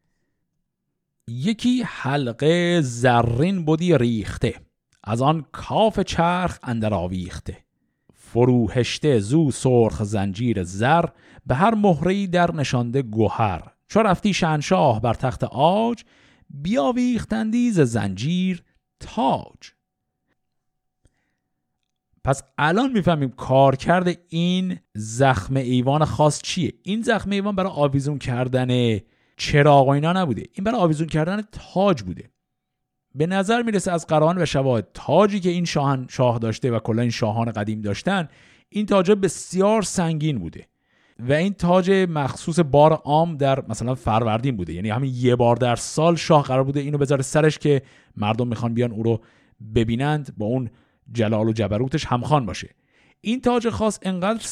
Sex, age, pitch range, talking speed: male, 50-69, 120-175 Hz, 135 wpm